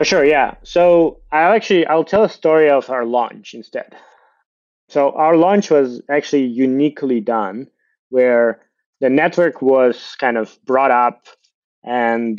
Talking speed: 145 wpm